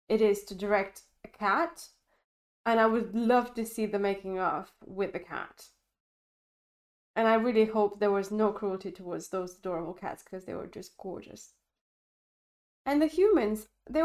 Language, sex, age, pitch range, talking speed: English, female, 20-39, 200-275 Hz, 165 wpm